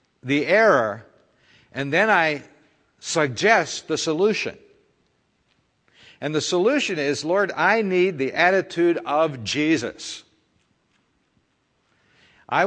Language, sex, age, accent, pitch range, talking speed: English, male, 60-79, American, 120-170 Hz, 95 wpm